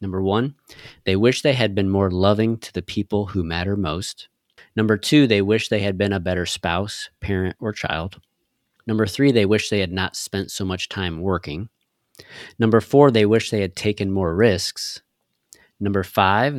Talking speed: 185 wpm